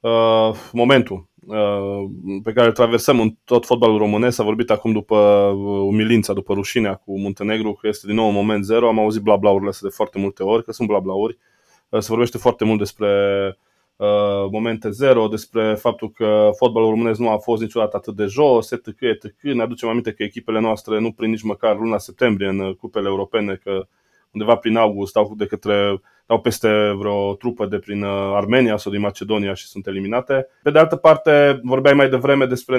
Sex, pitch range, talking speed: male, 105-125 Hz, 190 wpm